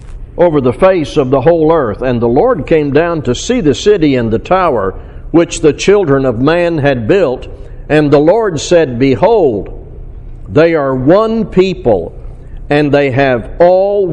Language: English